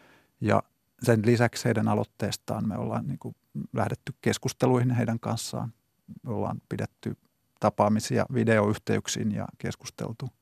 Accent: native